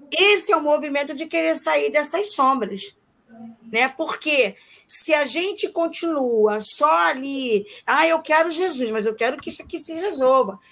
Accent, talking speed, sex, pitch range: Brazilian, 160 wpm, female, 245-335 Hz